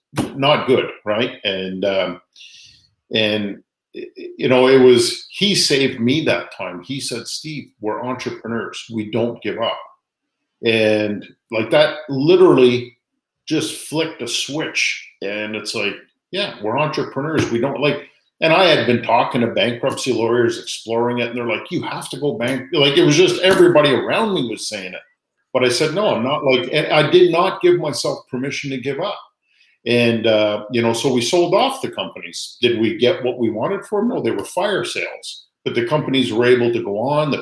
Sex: male